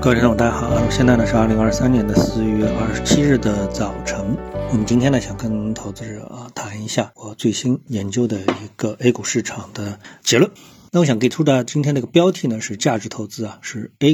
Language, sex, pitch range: Chinese, male, 110-150 Hz